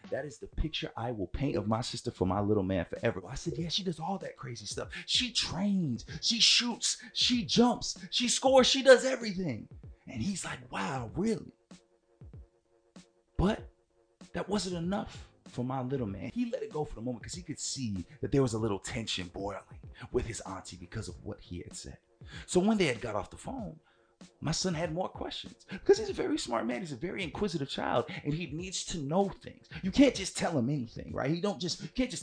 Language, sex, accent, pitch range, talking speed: English, male, American, 115-185 Hz, 220 wpm